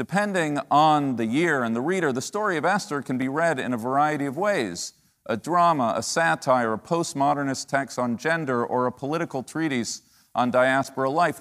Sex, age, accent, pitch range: male, 40-59, American, 115-155 Hz